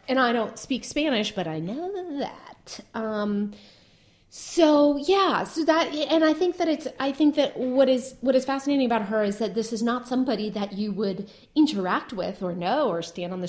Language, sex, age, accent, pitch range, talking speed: English, female, 30-49, American, 185-250 Hz, 205 wpm